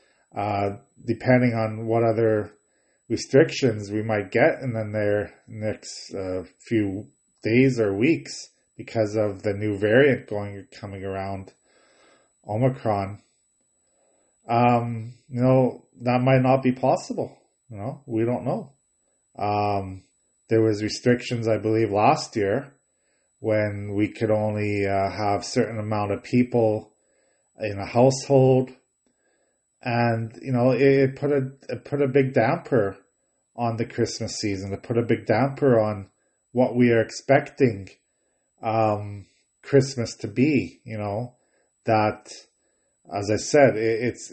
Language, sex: English, male